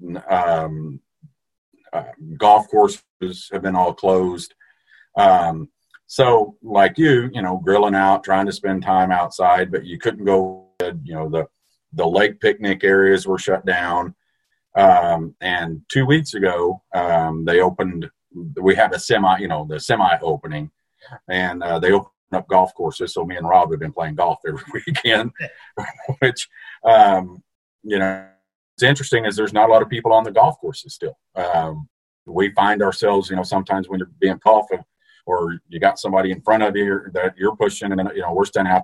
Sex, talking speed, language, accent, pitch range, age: male, 180 wpm, English, American, 85-110 Hz, 50-69